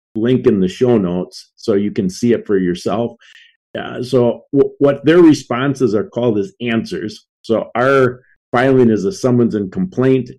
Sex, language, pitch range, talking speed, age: male, English, 115-135 Hz, 170 wpm, 50-69